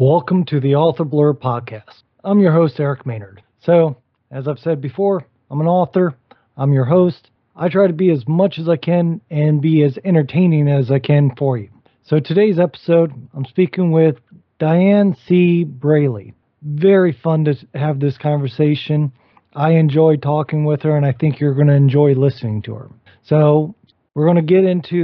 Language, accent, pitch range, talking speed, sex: English, American, 140-170 Hz, 180 wpm, male